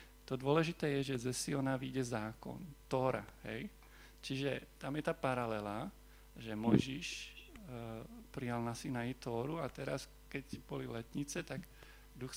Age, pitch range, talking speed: 40-59, 120-140 Hz, 140 wpm